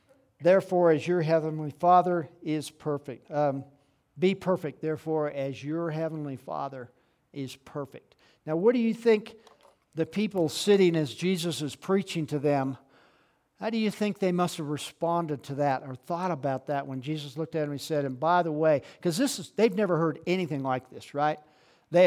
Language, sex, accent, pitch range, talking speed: English, male, American, 140-175 Hz, 175 wpm